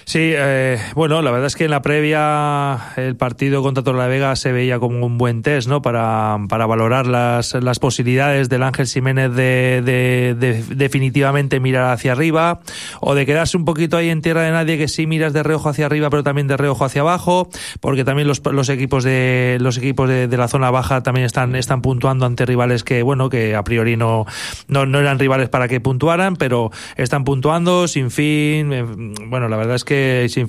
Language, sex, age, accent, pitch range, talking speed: Spanish, male, 30-49, Spanish, 130-155 Hz, 205 wpm